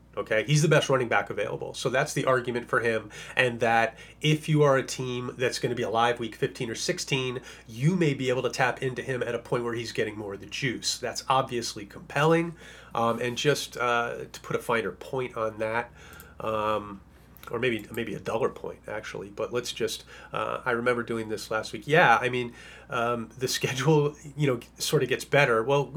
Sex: male